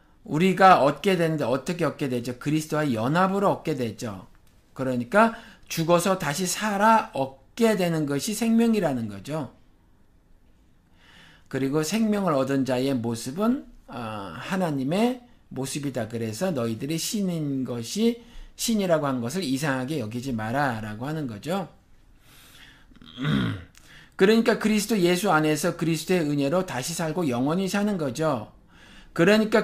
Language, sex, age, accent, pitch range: Korean, male, 50-69, native, 135-195 Hz